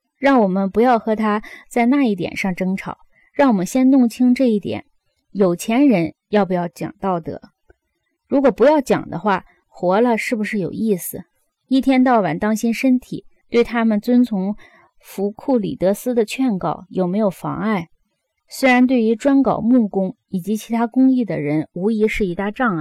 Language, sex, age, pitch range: Chinese, female, 20-39, 200-260 Hz